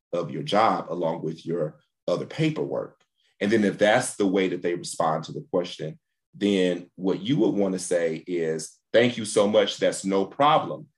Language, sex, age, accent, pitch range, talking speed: English, male, 40-59, American, 90-115 Hz, 190 wpm